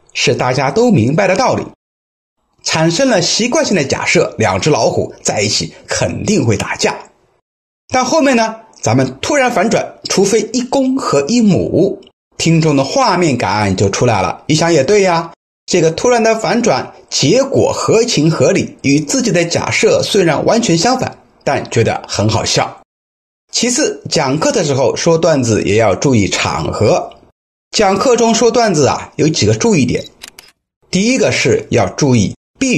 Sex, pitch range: male, 150-240 Hz